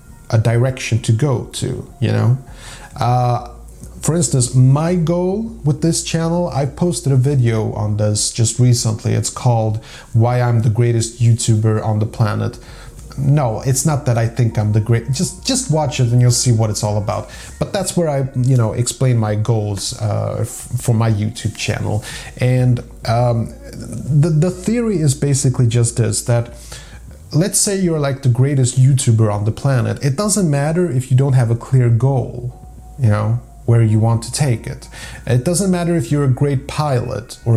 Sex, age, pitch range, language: male, 30-49, 115-145 Hz, English